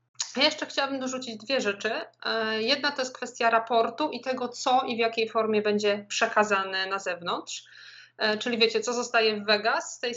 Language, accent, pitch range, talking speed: Polish, native, 200-235 Hz, 170 wpm